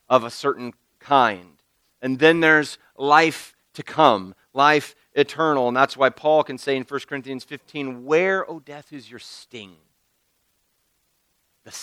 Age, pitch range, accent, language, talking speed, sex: 40-59, 110-150 Hz, American, English, 145 wpm, male